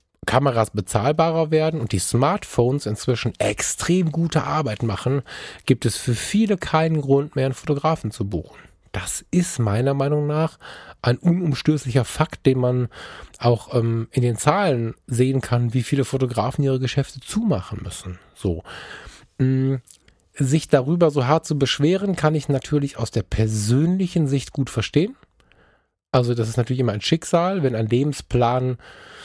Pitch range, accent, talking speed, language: 115-155 Hz, German, 150 wpm, German